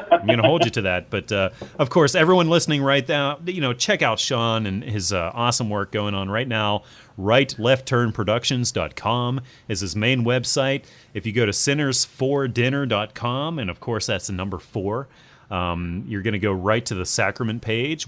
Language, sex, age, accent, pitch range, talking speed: English, male, 30-49, American, 100-135 Hz, 185 wpm